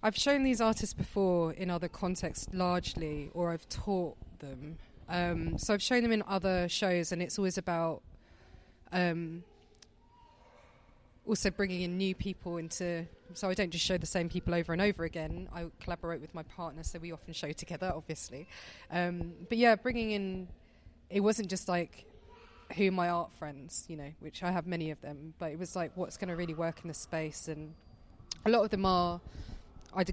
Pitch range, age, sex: 160-185 Hz, 20-39, female